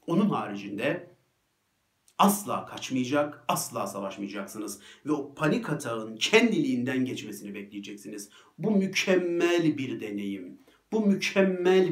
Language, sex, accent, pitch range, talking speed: Turkish, male, native, 115-160 Hz, 95 wpm